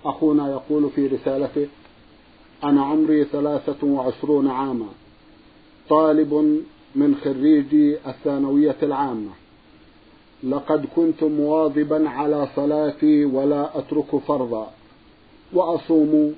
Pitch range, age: 145-155 Hz, 50-69